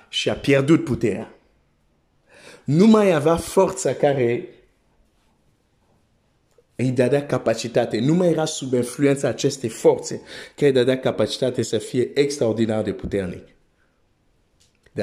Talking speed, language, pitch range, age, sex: 115 wpm, Romanian, 120-170 Hz, 50-69, male